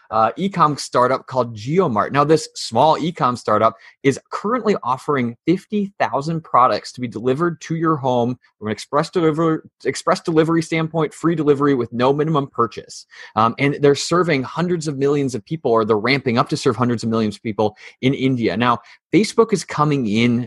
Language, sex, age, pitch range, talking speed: English, male, 20-39, 110-150 Hz, 180 wpm